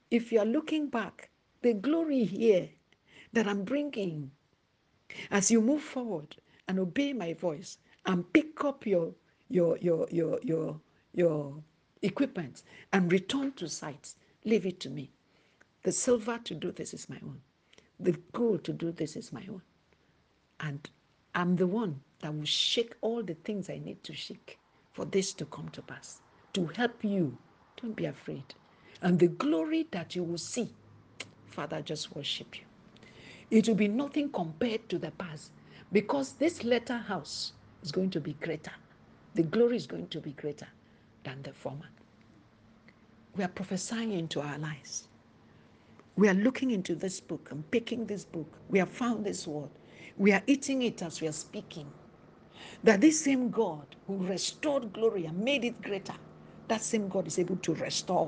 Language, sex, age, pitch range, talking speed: English, female, 60-79, 165-230 Hz, 170 wpm